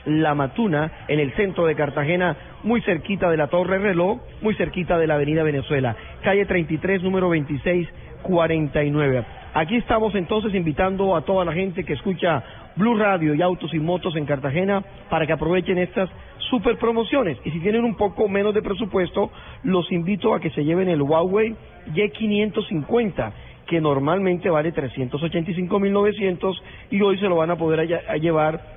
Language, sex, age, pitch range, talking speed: Spanish, male, 40-59, 155-190 Hz, 160 wpm